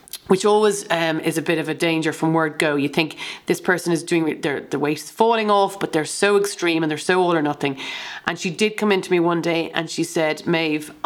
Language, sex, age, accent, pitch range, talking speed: English, female, 40-59, Irish, 160-190 Hz, 245 wpm